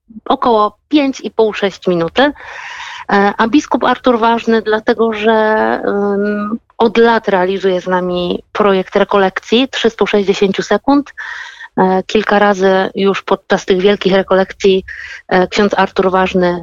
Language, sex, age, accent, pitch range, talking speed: Polish, female, 50-69, native, 190-225 Hz, 110 wpm